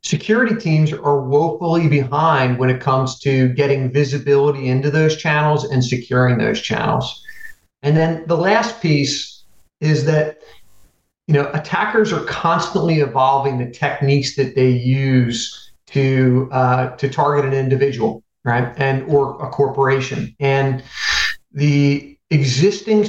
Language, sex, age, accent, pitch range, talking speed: English, male, 40-59, American, 130-150 Hz, 130 wpm